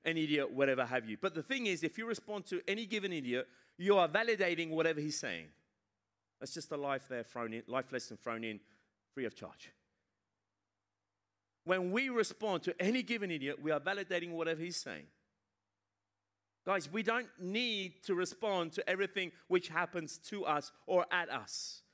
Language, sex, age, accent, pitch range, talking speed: Italian, male, 30-49, British, 130-215 Hz, 170 wpm